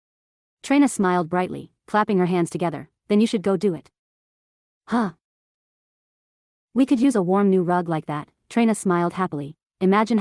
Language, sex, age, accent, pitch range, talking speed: English, female, 40-59, American, 170-210 Hz, 160 wpm